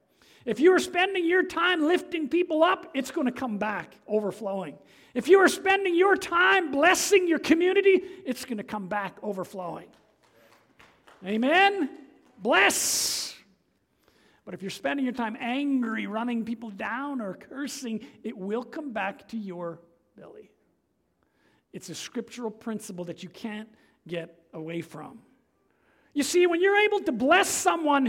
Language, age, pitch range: English, 50-69, 230-350 Hz